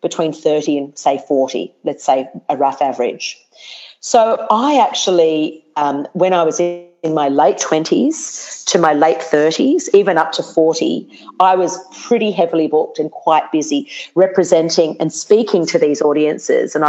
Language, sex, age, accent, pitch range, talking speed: English, female, 40-59, Australian, 155-230 Hz, 155 wpm